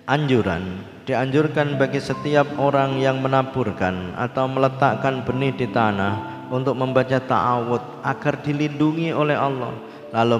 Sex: male